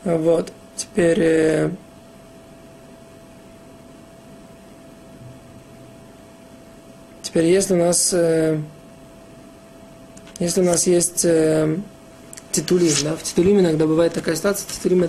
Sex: male